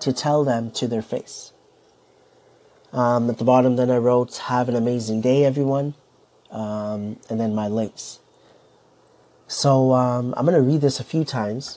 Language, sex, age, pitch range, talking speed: English, male, 30-49, 115-140 Hz, 170 wpm